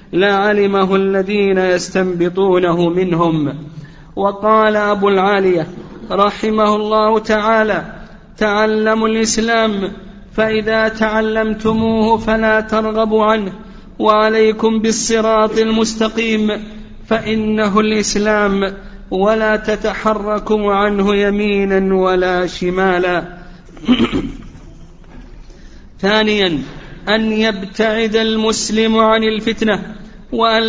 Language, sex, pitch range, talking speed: Arabic, male, 205-220 Hz, 70 wpm